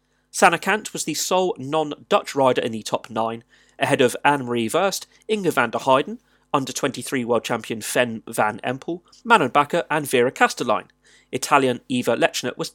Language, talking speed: English, 155 wpm